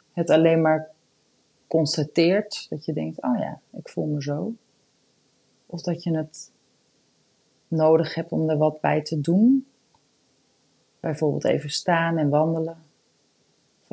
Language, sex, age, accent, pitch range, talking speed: Dutch, female, 30-49, Dutch, 155-210 Hz, 135 wpm